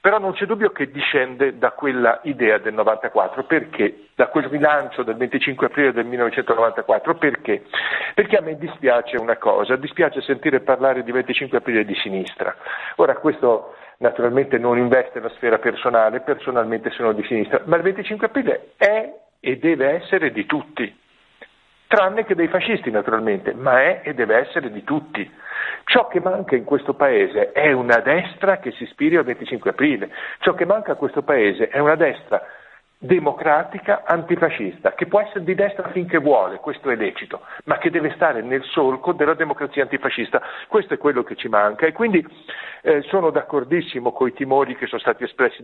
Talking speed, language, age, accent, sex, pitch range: 170 wpm, Italian, 50-69, native, male, 130-185 Hz